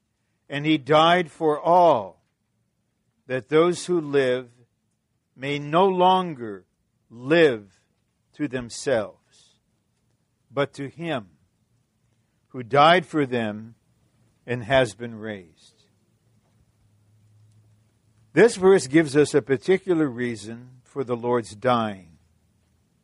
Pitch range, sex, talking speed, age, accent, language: 115-155 Hz, male, 95 wpm, 60-79, American, English